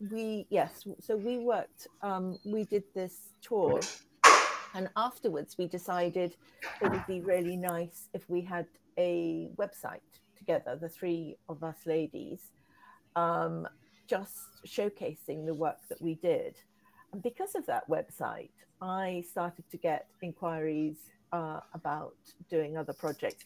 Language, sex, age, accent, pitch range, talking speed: English, female, 50-69, British, 165-205 Hz, 135 wpm